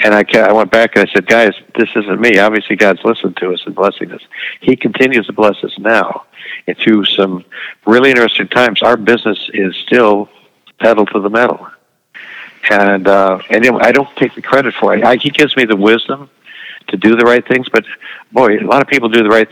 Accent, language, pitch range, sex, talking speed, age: American, English, 100-115 Hz, male, 210 wpm, 60-79